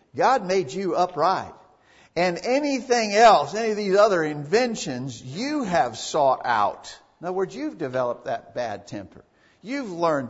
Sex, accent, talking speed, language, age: male, American, 150 wpm, English, 50-69